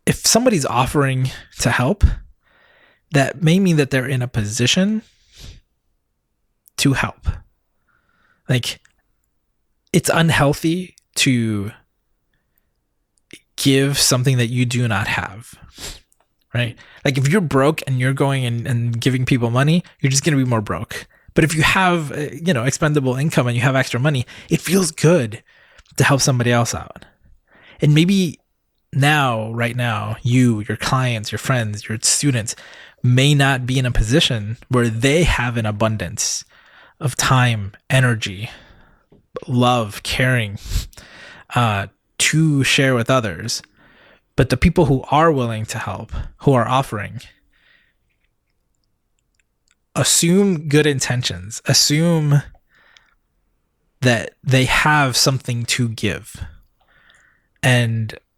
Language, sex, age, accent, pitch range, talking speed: English, male, 20-39, American, 115-145 Hz, 125 wpm